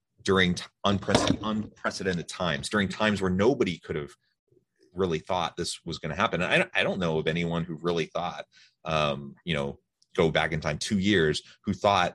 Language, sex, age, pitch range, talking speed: English, male, 30-49, 80-100 Hz, 180 wpm